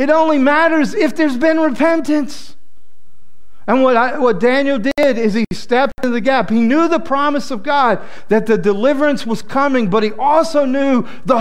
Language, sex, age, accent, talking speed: English, male, 50-69, American, 185 wpm